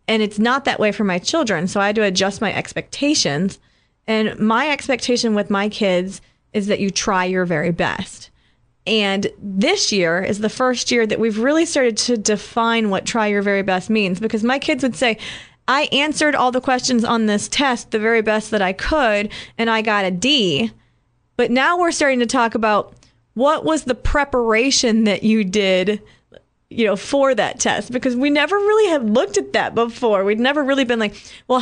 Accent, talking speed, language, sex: American, 200 wpm, English, female